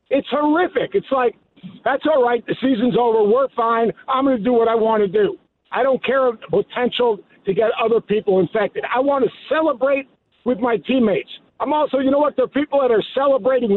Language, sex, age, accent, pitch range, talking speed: English, male, 50-69, American, 215-280 Hz, 220 wpm